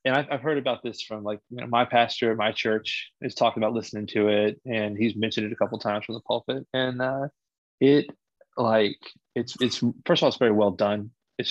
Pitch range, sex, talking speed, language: 105-125 Hz, male, 235 wpm, English